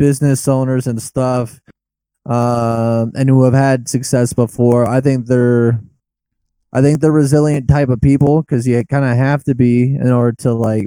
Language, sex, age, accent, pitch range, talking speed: English, male, 20-39, American, 115-130 Hz, 175 wpm